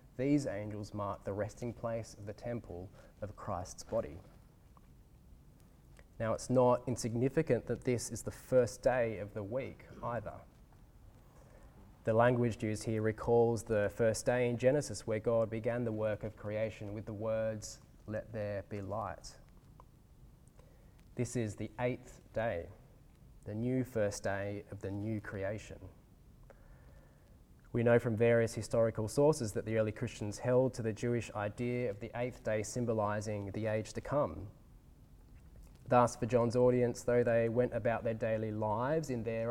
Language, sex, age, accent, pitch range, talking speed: English, male, 20-39, Australian, 105-125 Hz, 150 wpm